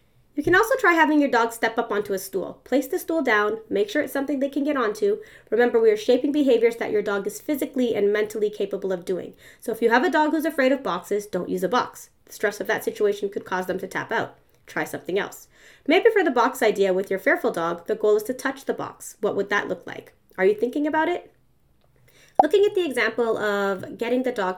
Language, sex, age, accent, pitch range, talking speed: English, female, 20-39, American, 185-280 Hz, 245 wpm